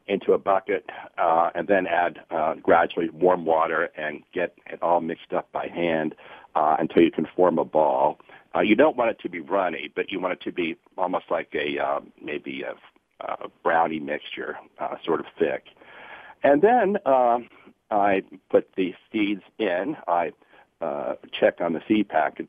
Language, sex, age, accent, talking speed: English, male, 50-69, American, 180 wpm